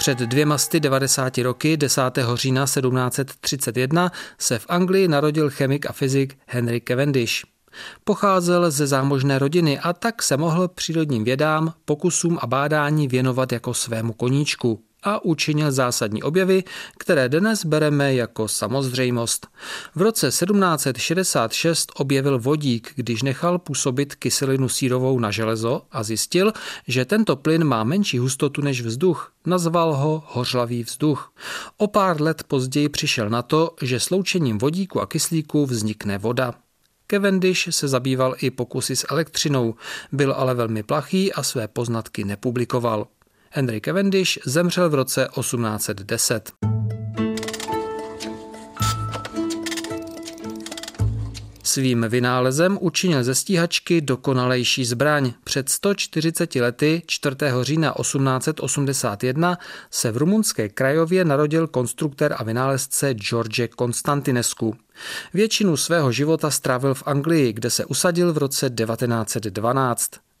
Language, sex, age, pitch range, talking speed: Czech, male, 40-59, 120-160 Hz, 120 wpm